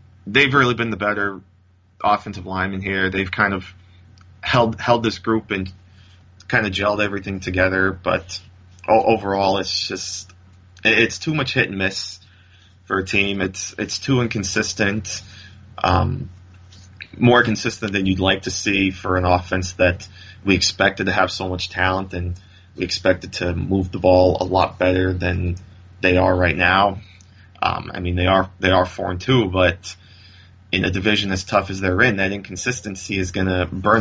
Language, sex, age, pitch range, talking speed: English, male, 20-39, 90-100 Hz, 170 wpm